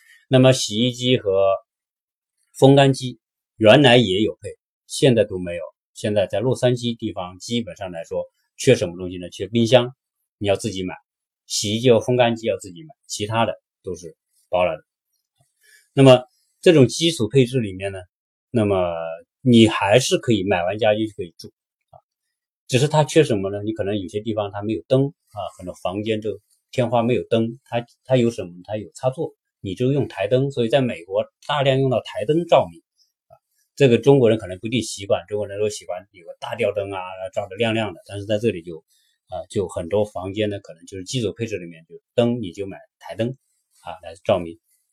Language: Chinese